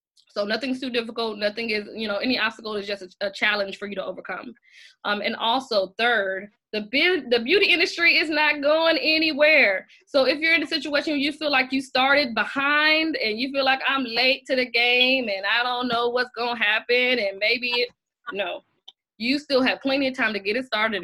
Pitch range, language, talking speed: 210-270 Hz, English, 215 wpm